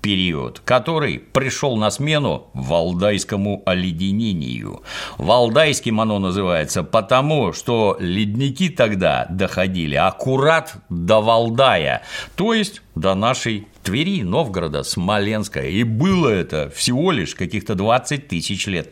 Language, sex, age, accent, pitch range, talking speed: Russian, male, 60-79, native, 85-125 Hz, 105 wpm